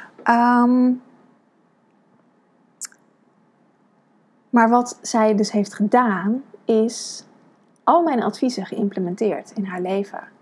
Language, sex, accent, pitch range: Dutch, female, Dutch, 210-250 Hz